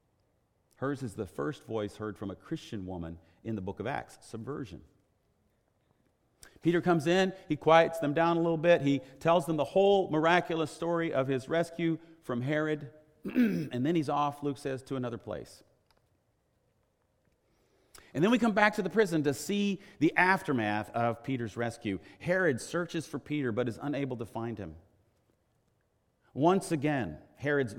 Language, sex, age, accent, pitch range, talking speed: English, male, 40-59, American, 105-165 Hz, 160 wpm